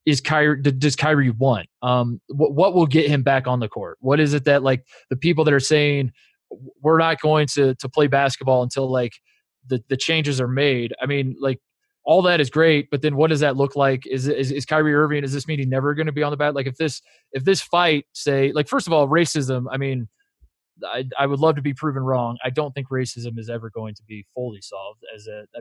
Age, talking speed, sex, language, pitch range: 20-39, 240 wpm, male, English, 130-155 Hz